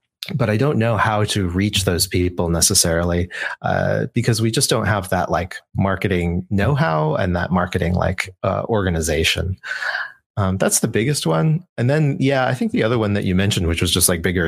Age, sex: 30-49, male